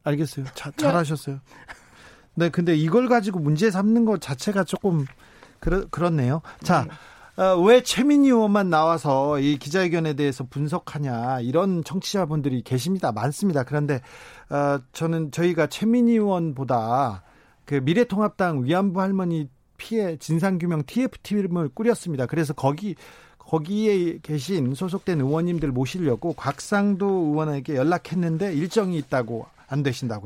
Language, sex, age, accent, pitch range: Korean, male, 40-59, native, 145-190 Hz